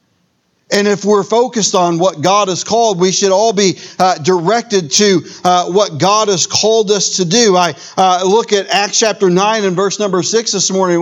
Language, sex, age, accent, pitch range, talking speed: English, male, 50-69, American, 185-225 Hz, 200 wpm